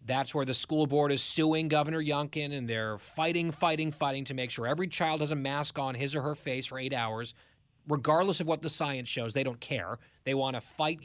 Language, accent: English, American